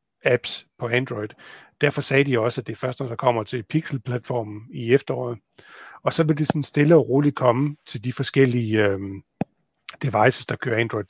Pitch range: 115-140 Hz